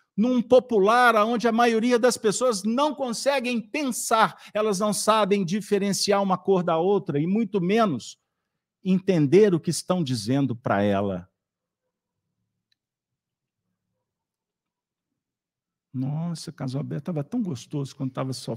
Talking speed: 115 wpm